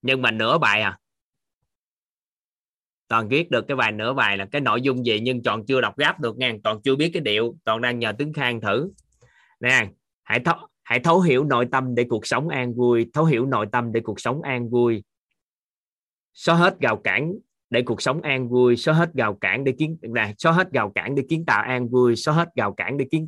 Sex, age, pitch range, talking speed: male, 20-39, 115-145 Hz, 220 wpm